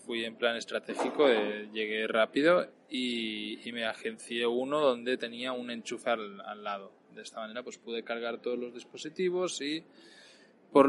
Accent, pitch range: Spanish, 115-130 Hz